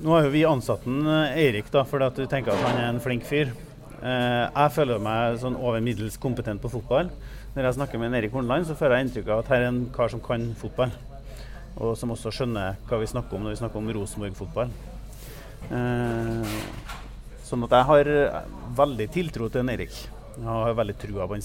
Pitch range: 110-130 Hz